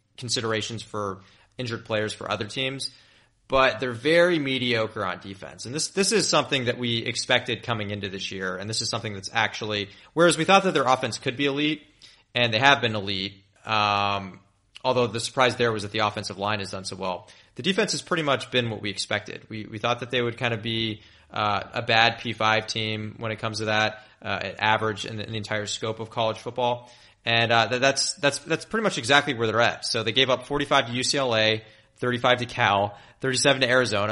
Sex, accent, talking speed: male, American, 220 wpm